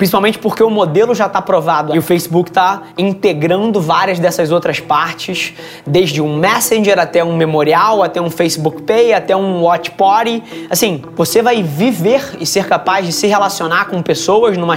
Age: 20-39